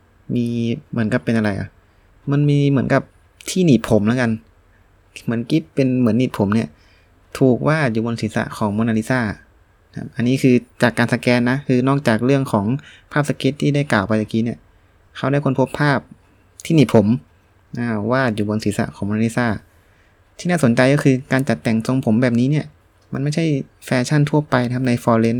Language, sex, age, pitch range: Thai, male, 20-39, 105-135 Hz